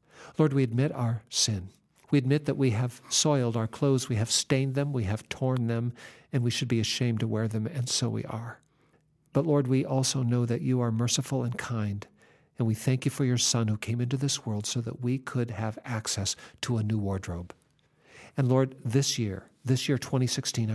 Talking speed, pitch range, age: 210 wpm, 115-140 Hz, 50-69